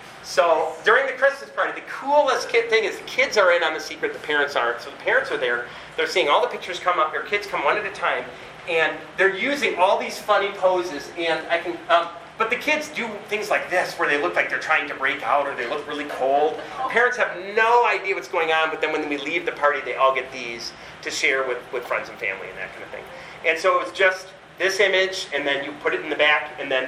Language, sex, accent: English, male, American